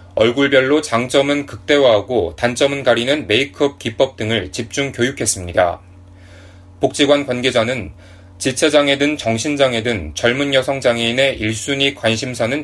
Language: Korean